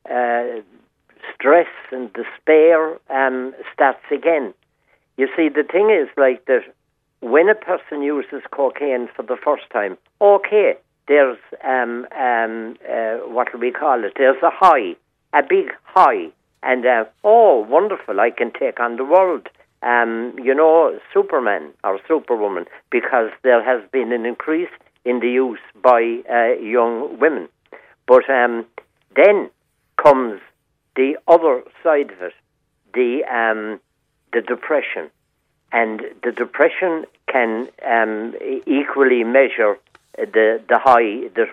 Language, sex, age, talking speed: English, male, 60-79, 135 wpm